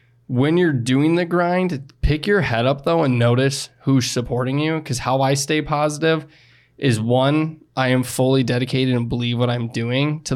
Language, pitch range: English, 120-140 Hz